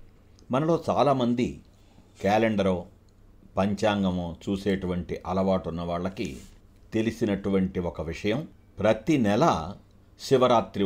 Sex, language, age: male, Telugu, 60-79